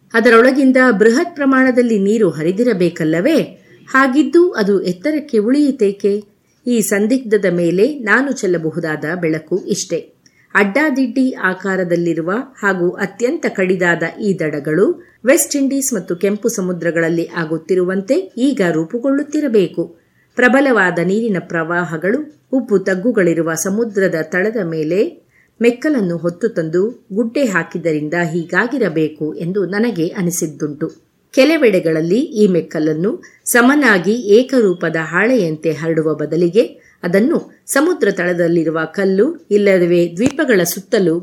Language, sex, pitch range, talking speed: Kannada, female, 170-245 Hz, 90 wpm